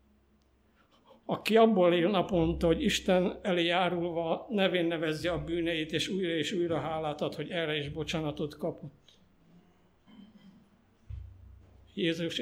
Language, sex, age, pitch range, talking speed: Hungarian, male, 60-79, 110-175 Hz, 115 wpm